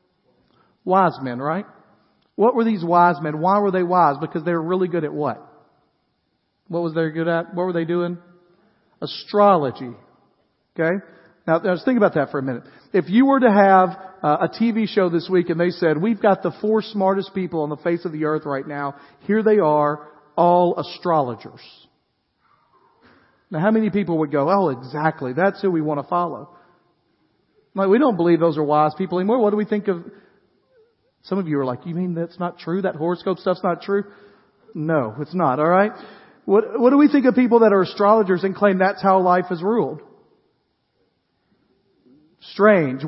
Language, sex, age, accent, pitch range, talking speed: English, male, 40-59, American, 165-205 Hz, 190 wpm